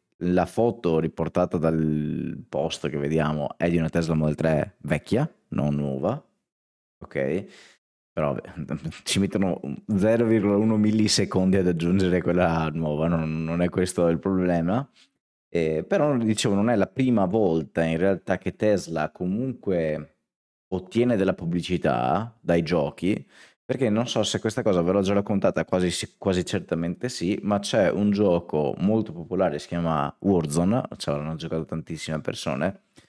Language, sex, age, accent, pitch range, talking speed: Italian, male, 30-49, native, 80-105 Hz, 145 wpm